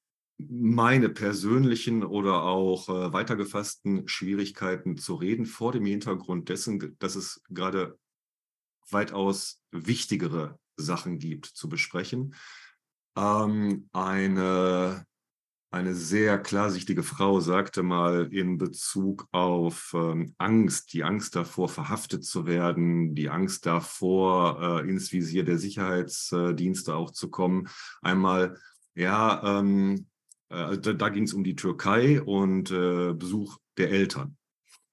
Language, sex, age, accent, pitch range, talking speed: German, male, 40-59, German, 90-110 Hz, 115 wpm